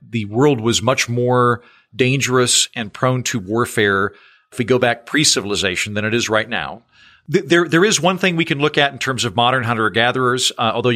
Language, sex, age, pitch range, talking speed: English, male, 40-59, 110-130 Hz, 205 wpm